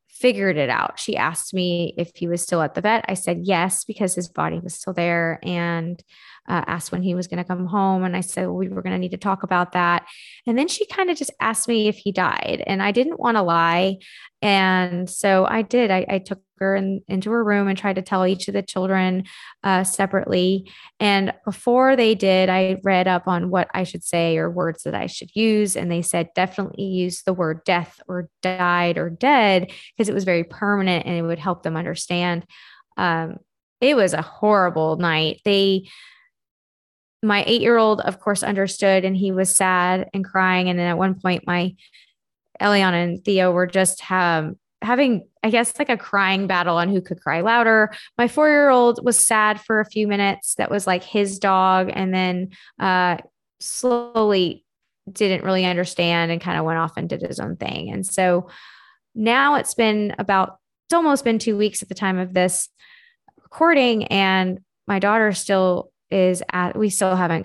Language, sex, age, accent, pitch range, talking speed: English, female, 20-39, American, 180-210 Hz, 195 wpm